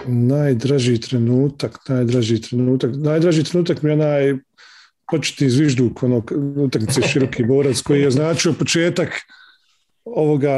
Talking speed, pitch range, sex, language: 125 wpm, 140-165 Hz, male, English